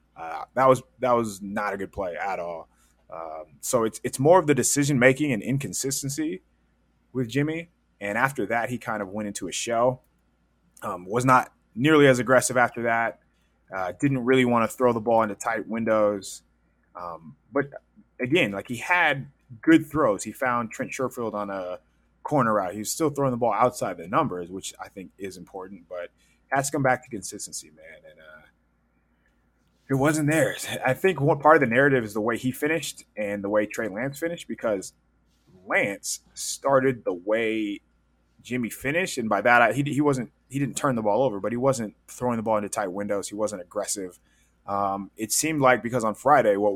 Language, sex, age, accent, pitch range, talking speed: English, male, 20-39, American, 95-135 Hz, 195 wpm